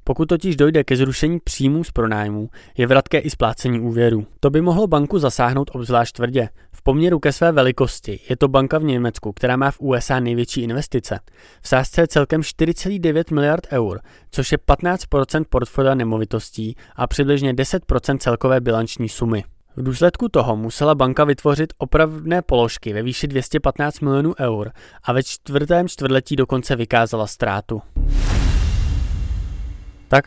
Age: 20-39